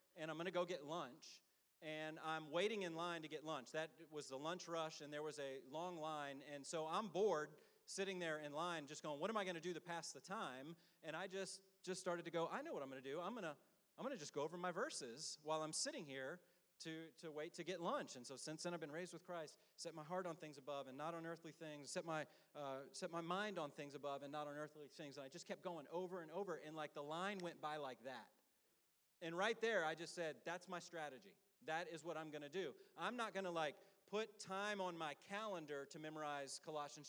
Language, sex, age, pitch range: English, male, 30-49, 155-180 Hz